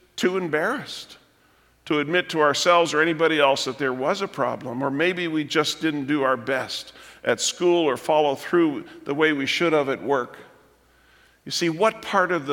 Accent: American